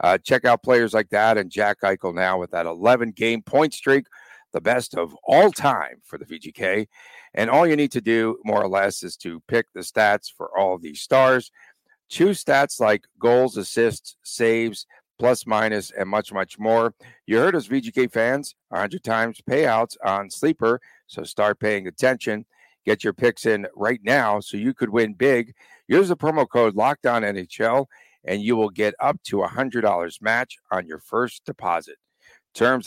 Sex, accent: male, American